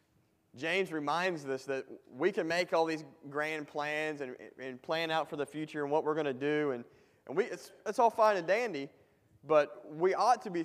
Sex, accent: male, American